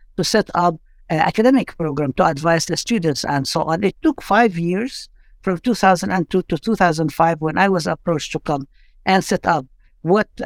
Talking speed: 180 wpm